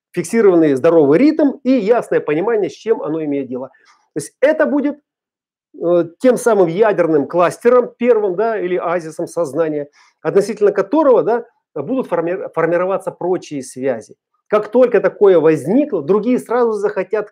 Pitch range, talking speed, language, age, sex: 160-260 Hz, 135 wpm, Russian, 40-59, male